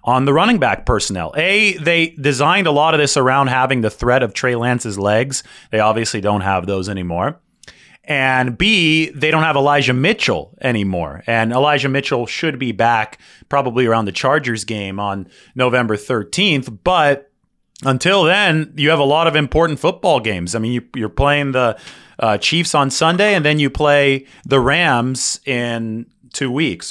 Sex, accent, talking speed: male, American, 170 wpm